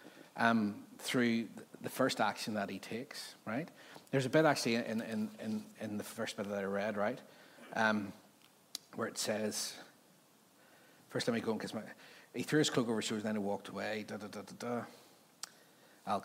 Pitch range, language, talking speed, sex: 105-135 Hz, English, 190 wpm, male